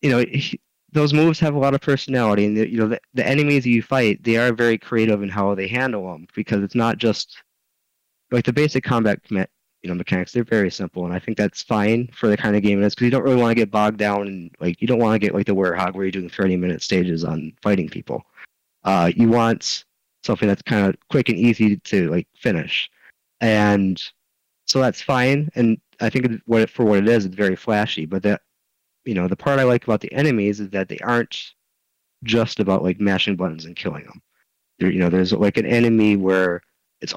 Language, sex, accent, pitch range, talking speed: English, male, American, 95-115 Hz, 220 wpm